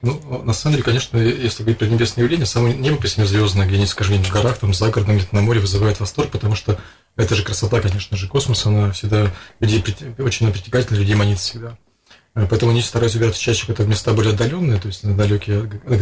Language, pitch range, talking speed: Russian, 105-125 Hz, 200 wpm